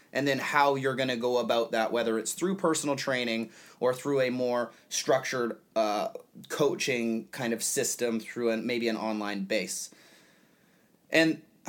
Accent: American